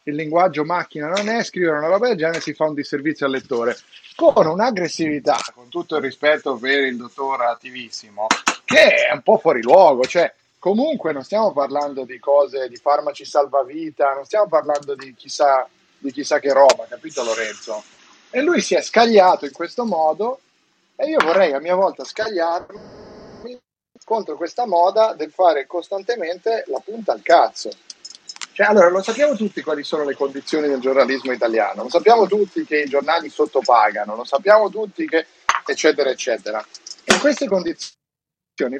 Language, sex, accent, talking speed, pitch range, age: Italian, male, native, 160 wpm, 130-175 Hz, 30-49